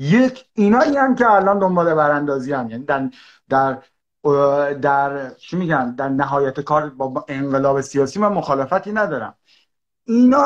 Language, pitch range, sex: Persian, 155-210 Hz, male